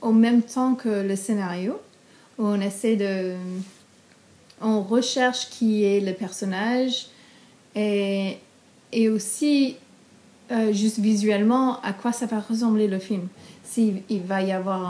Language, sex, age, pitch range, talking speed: French, female, 30-49, 195-230 Hz, 135 wpm